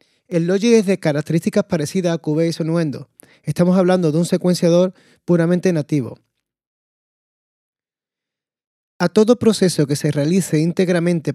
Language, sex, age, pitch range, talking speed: Spanish, male, 30-49, 150-175 Hz, 125 wpm